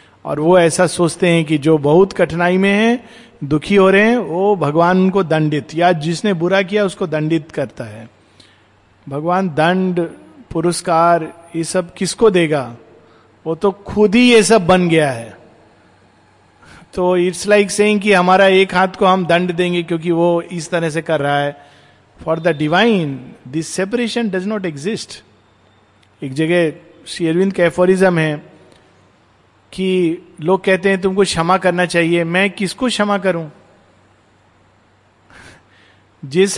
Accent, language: native, Hindi